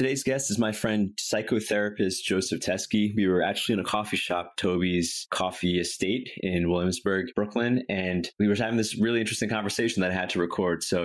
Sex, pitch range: male, 90-105 Hz